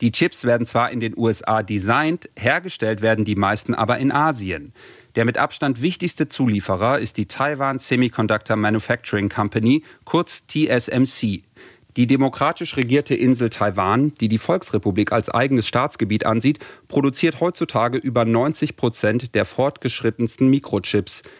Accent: German